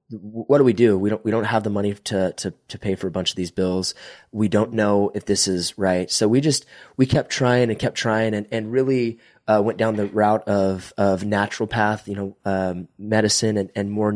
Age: 20-39